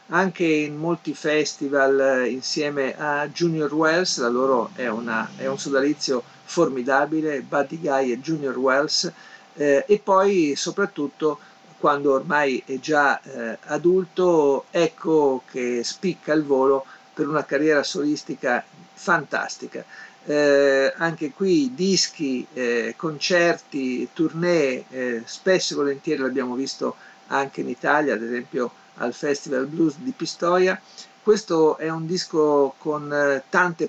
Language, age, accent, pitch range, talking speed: Italian, 50-69, native, 135-165 Hz, 125 wpm